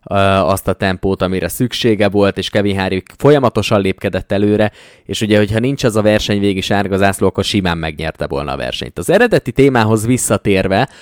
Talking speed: 170 wpm